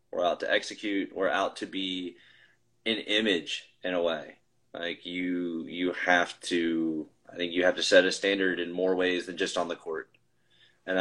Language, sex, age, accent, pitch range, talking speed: English, male, 20-39, American, 90-115 Hz, 195 wpm